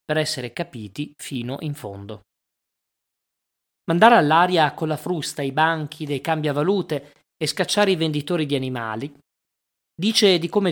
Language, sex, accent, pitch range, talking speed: Italian, male, native, 130-170 Hz, 135 wpm